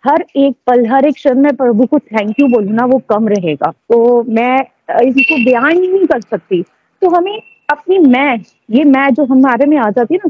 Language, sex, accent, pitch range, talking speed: Hindi, female, native, 225-285 Hz, 200 wpm